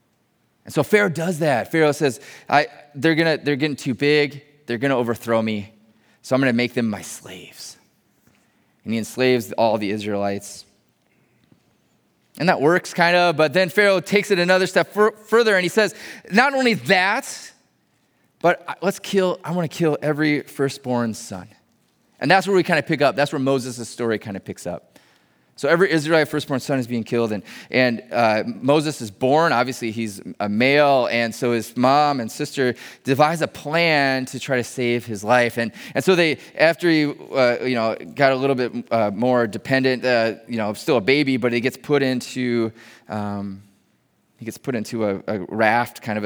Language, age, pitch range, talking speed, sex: English, 20-39, 115-155 Hz, 195 wpm, male